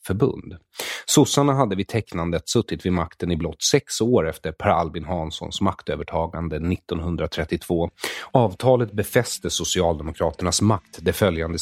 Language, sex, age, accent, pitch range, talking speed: English, male, 30-49, Swedish, 85-105 Hz, 120 wpm